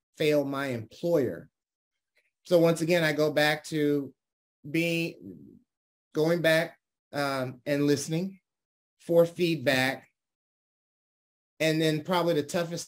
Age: 30-49